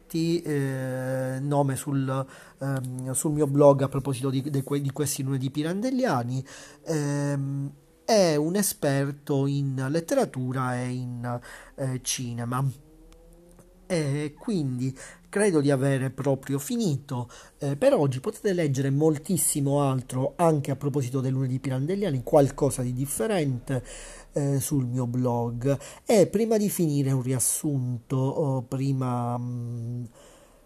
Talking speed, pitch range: 120 wpm, 130-150 Hz